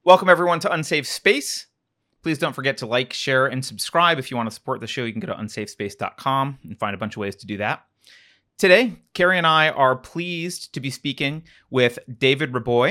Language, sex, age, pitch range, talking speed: English, male, 30-49, 120-155 Hz, 215 wpm